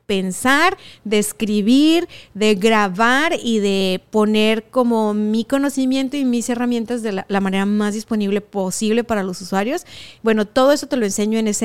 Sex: female